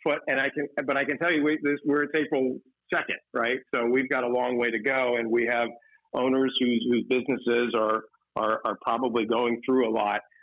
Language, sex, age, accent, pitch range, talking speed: English, male, 50-69, American, 115-135 Hz, 225 wpm